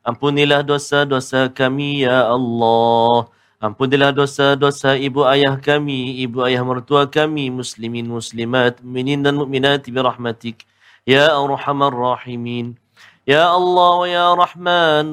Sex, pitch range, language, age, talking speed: male, 130-150 Hz, Malayalam, 40-59, 120 wpm